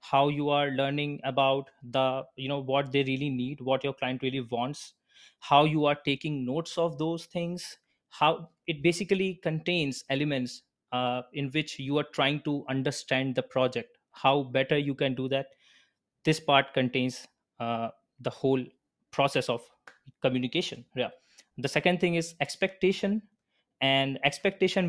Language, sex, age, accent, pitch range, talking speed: English, male, 20-39, Indian, 130-160 Hz, 150 wpm